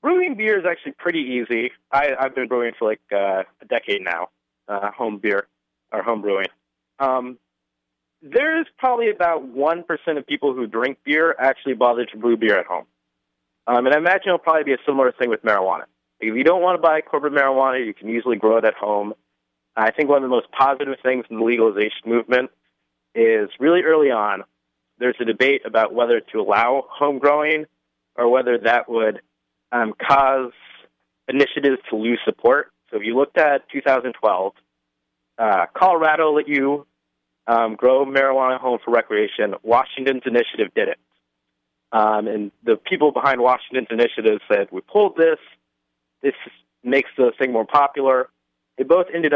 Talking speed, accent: 170 wpm, American